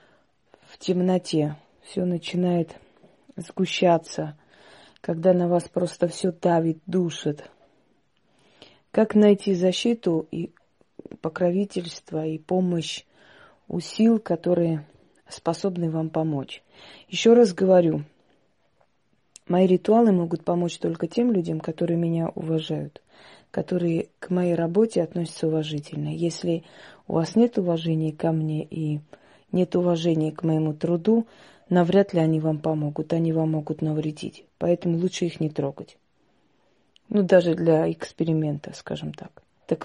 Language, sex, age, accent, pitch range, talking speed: Russian, female, 30-49, native, 155-185 Hz, 115 wpm